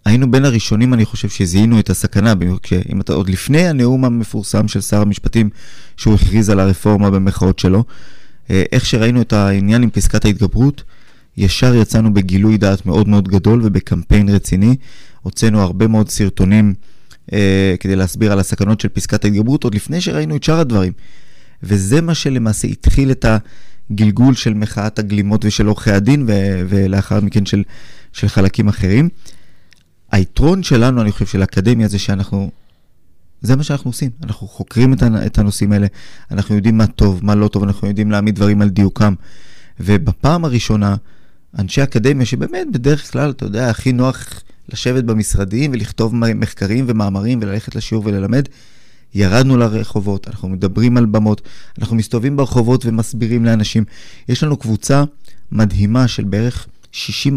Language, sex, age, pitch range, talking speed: Hebrew, male, 20-39, 100-120 Hz, 150 wpm